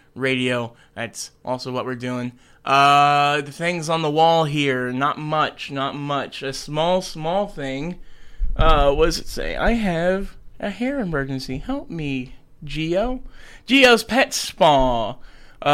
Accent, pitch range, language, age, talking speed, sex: American, 135-185 Hz, English, 20-39, 145 wpm, male